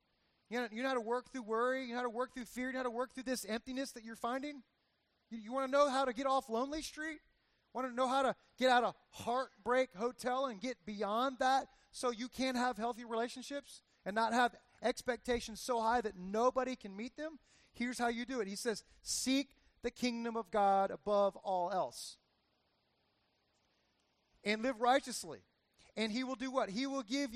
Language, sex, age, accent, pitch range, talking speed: English, male, 30-49, American, 220-270 Hz, 205 wpm